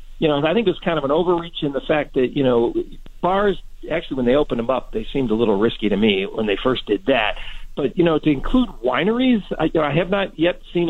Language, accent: English, American